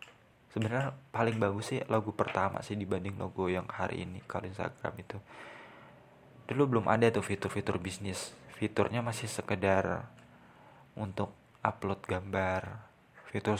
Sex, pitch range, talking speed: male, 100-120 Hz, 125 wpm